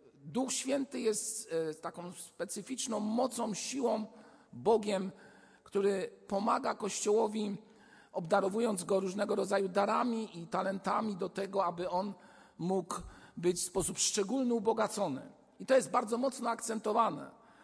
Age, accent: 50-69, native